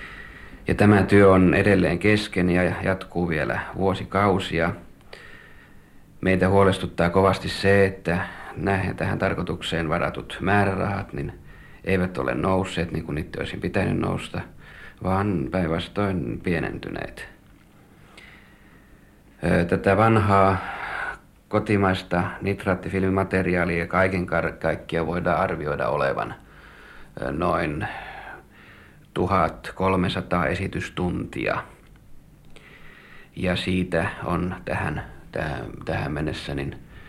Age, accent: 50-69, native